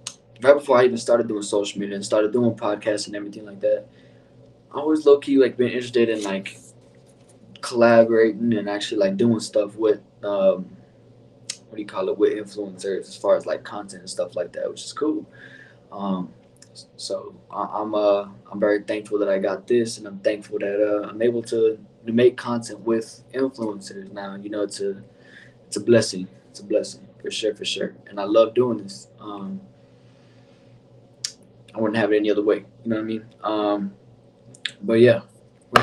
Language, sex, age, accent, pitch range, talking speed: English, male, 20-39, American, 100-125 Hz, 185 wpm